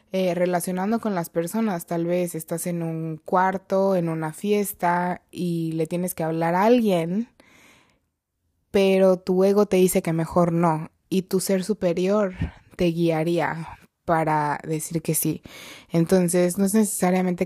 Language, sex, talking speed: Spanish, female, 150 wpm